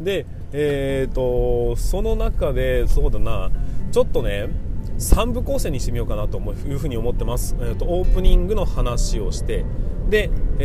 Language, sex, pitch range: Japanese, male, 110-150 Hz